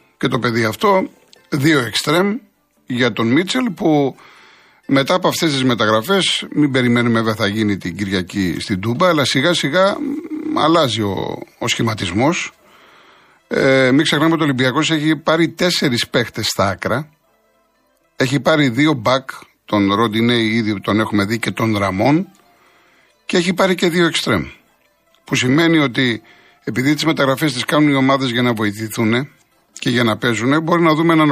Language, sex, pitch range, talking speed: Greek, male, 115-155 Hz, 160 wpm